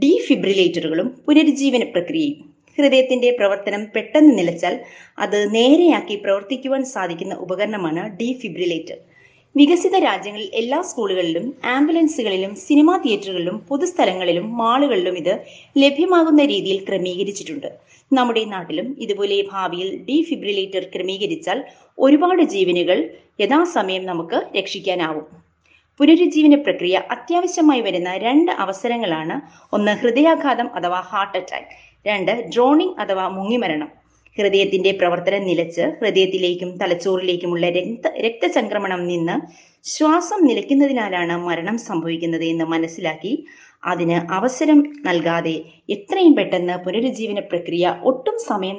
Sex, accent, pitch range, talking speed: female, native, 180-280 Hz, 90 wpm